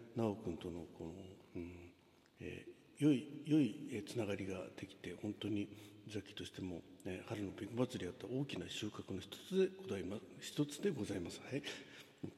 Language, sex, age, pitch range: Japanese, male, 60-79, 100-155 Hz